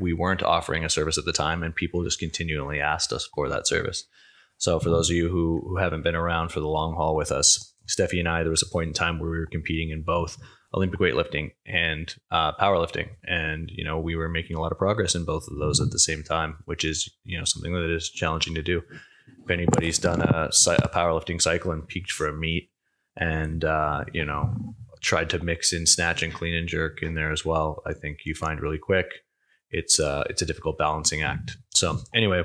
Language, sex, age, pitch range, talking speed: English, male, 20-39, 80-90 Hz, 230 wpm